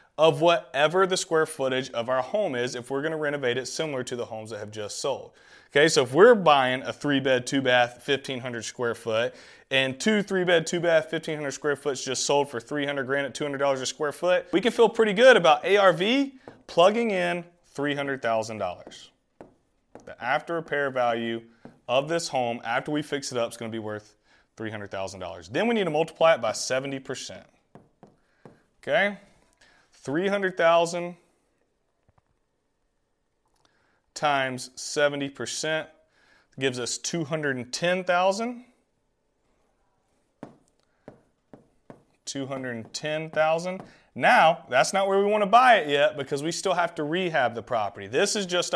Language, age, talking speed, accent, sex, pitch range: English, 30-49, 145 wpm, American, male, 130-175 Hz